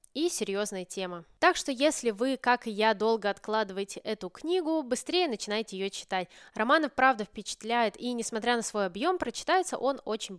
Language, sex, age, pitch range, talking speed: Russian, female, 20-39, 200-270 Hz, 170 wpm